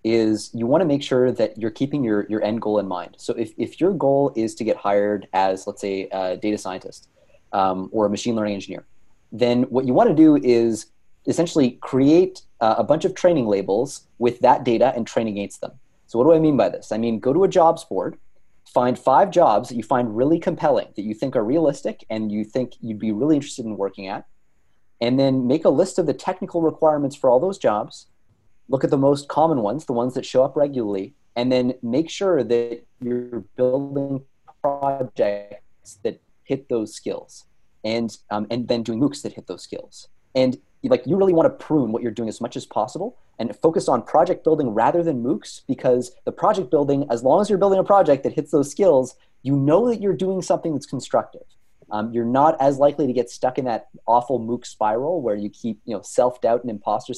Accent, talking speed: American, 220 wpm